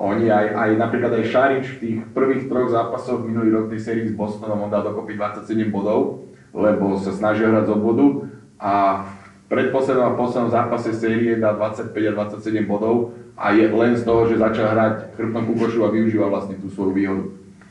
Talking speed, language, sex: 185 wpm, Slovak, male